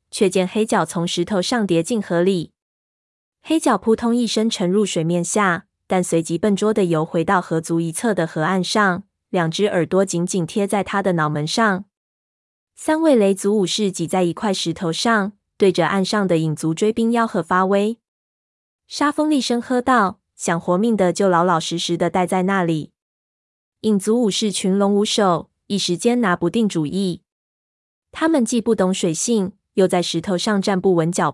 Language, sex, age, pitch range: Chinese, female, 20-39, 175-220 Hz